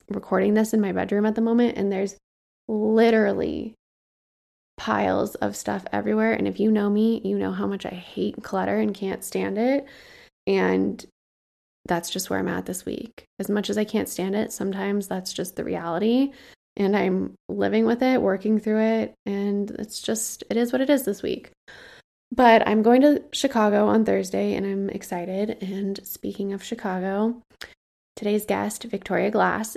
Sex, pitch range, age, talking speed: female, 185-225 Hz, 20-39, 175 wpm